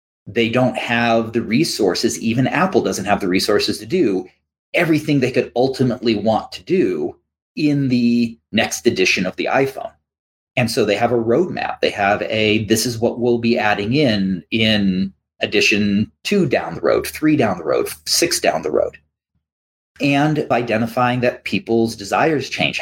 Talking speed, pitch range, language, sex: 165 wpm, 100-125 Hz, English, male